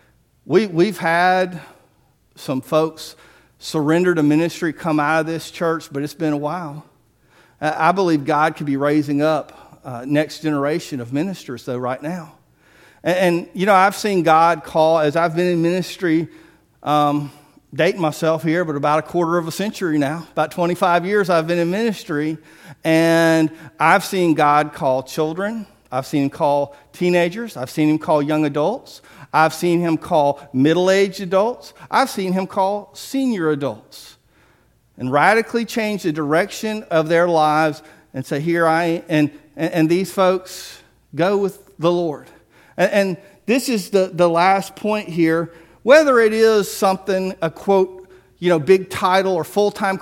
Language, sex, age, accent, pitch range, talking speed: English, male, 50-69, American, 155-190 Hz, 165 wpm